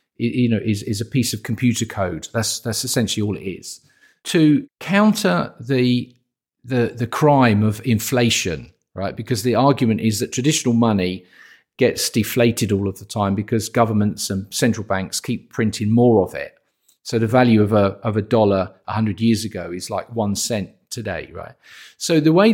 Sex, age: male, 50-69